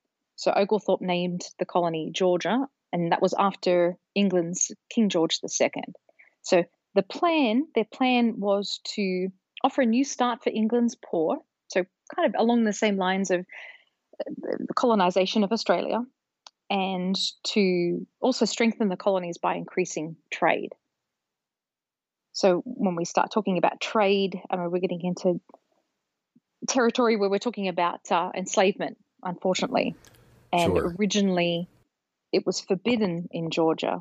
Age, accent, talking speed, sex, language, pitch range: 30-49, Australian, 130 wpm, female, English, 180-225 Hz